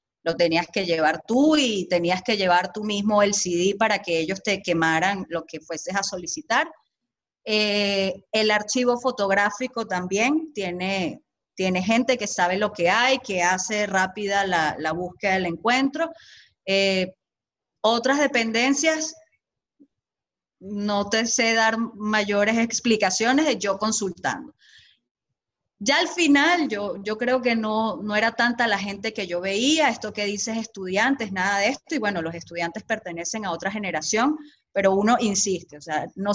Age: 30-49